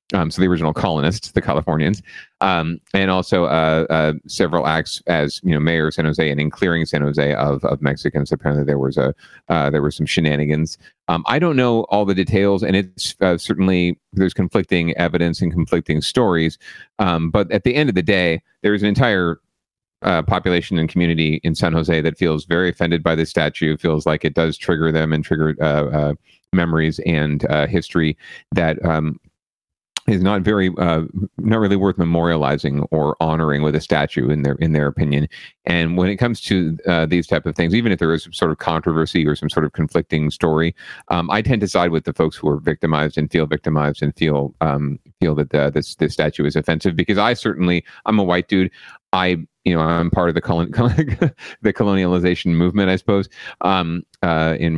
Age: 30-49